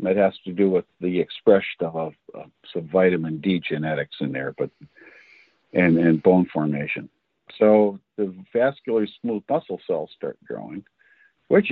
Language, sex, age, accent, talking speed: English, male, 50-69, American, 145 wpm